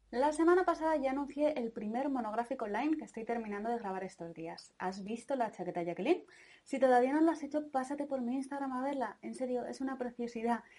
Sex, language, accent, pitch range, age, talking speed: female, Spanish, Spanish, 190-265 Hz, 20-39, 210 wpm